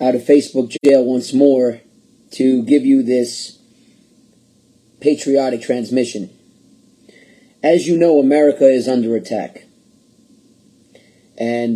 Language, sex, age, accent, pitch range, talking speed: English, male, 30-49, American, 125-165 Hz, 100 wpm